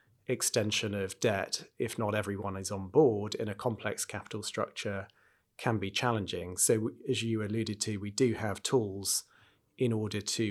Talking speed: 165 wpm